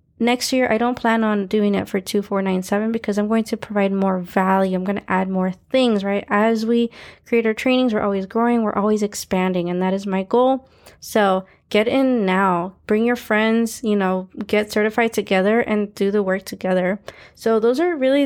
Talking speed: 200 wpm